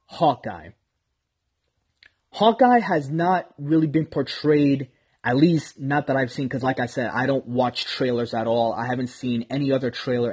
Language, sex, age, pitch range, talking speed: English, male, 20-39, 115-150 Hz, 170 wpm